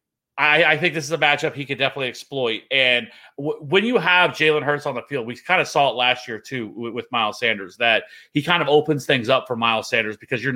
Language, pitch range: English, 115-145 Hz